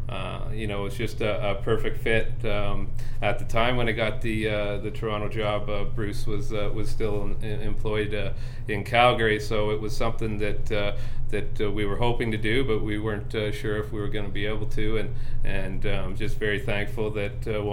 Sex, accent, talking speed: male, American, 230 wpm